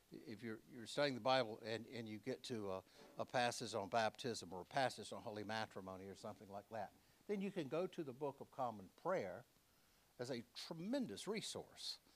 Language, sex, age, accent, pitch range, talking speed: English, male, 60-79, American, 110-135 Hz, 195 wpm